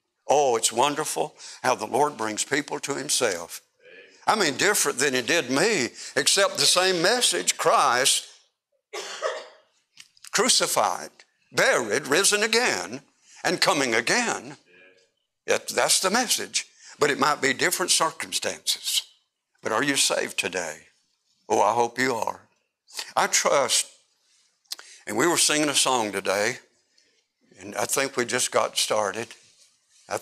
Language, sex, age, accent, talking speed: English, male, 60-79, American, 130 wpm